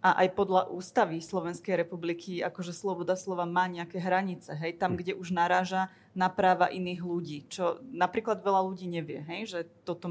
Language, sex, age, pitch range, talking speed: Slovak, female, 20-39, 170-190 Hz, 170 wpm